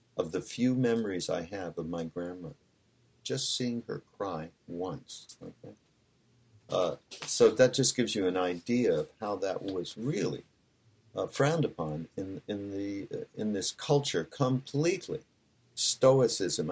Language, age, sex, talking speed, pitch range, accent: English, 50-69, male, 145 wpm, 90-125 Hz, American